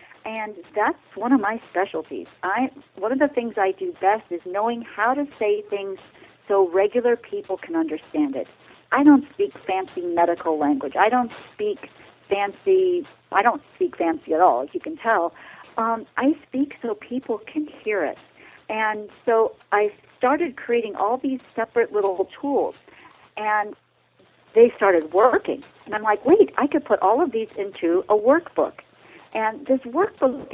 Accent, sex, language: American, female, English